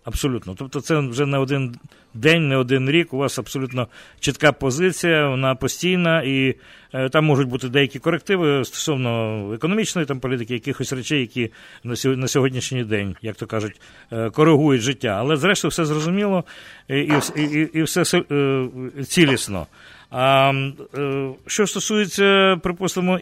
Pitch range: 125-160 Hz